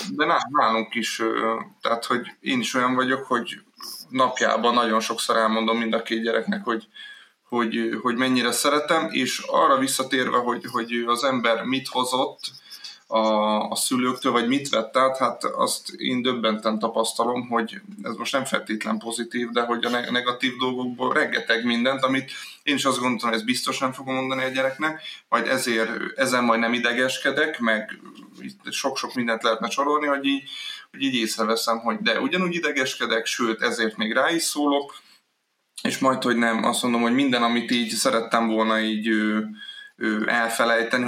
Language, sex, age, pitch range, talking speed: Hungarian, male, 30-49, 115-130 Hz, 160 wpm